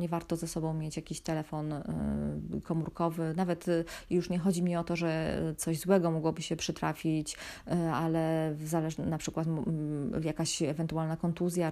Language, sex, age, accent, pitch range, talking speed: Polish, female, 20-39, native, 160-185 Hz, 150 wpm